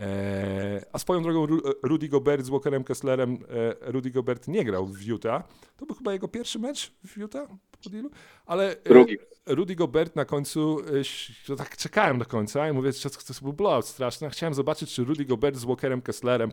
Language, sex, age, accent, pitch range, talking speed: Polish, male, 40-59, native, 110-145 Hz, 175 wpm